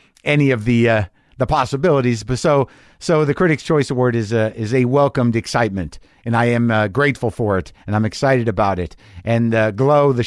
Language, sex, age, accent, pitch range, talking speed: English, male, 50-69, American, 110-150 Hz, 205 wpm